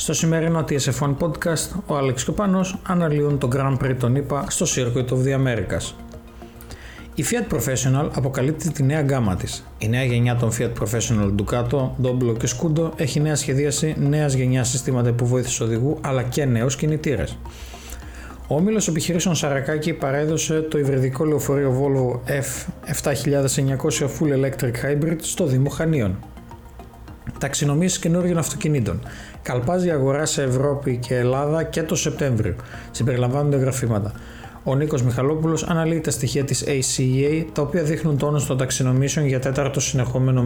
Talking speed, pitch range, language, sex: 145 wpm, 125-155 Hz, Greek, male